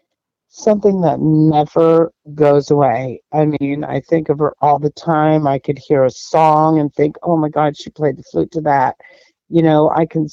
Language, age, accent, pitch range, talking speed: English, 50-69, American, 140-165 Hz, 200 wpm